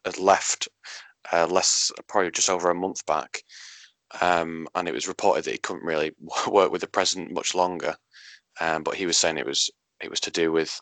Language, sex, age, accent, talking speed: English, male, 20-39, British, 205 wpm